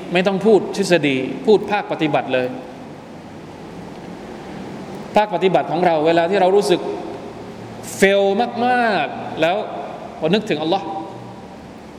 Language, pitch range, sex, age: Thai, 150-210 Hz, male, 20-39